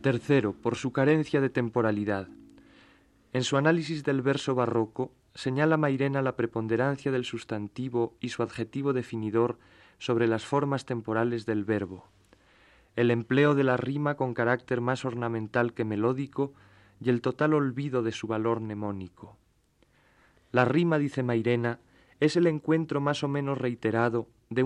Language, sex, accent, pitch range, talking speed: Spanish, male, Spanish, 110-135 Hz, 145 wpm